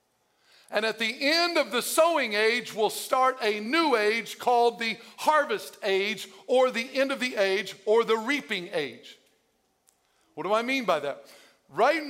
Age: 50-69